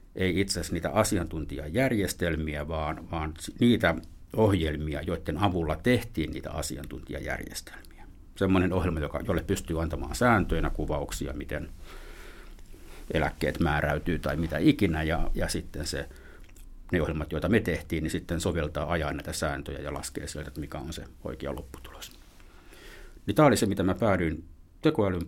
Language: Finnish